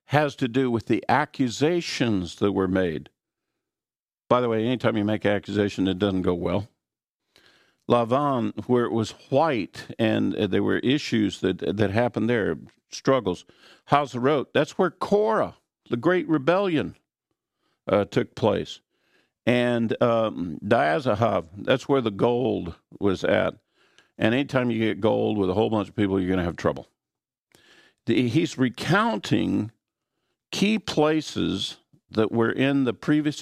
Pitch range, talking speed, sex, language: 105-135 Hz, 145 wpm, male, English